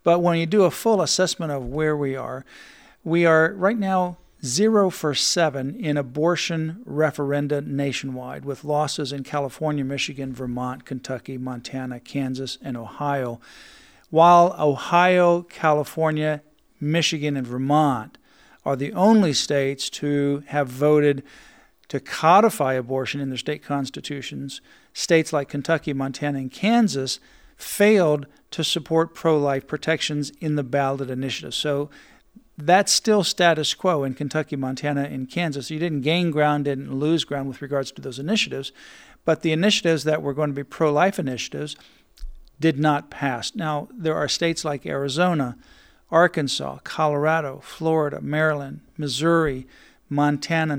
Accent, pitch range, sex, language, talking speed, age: American, 140-165 Hz, male, English, 135 wpm, 50-69